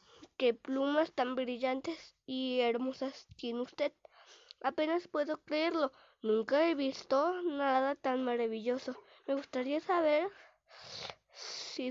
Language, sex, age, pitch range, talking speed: Spanish, female, 20-39, 255-295 Hz, 105 wpm